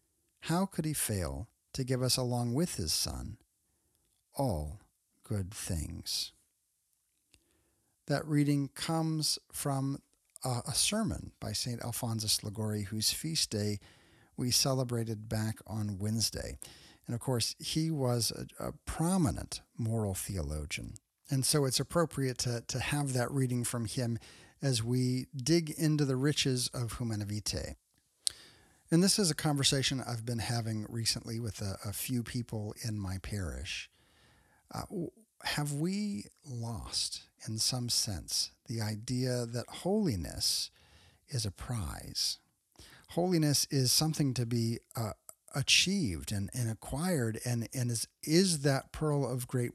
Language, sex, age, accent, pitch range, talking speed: English, male, 50-69, American, 105-140 Hz, 130 wpm